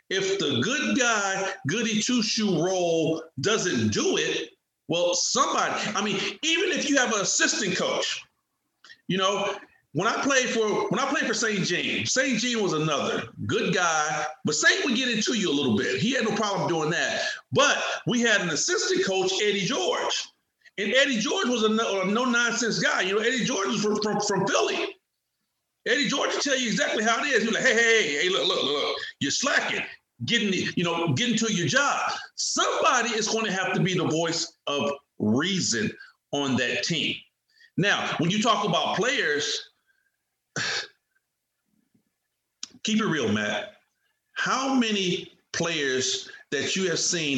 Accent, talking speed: American, 175 wpm